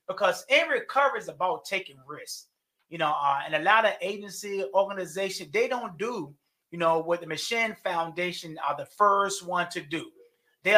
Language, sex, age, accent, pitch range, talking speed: English, male, 30-49, American, 190-250 Hz, 180 wpm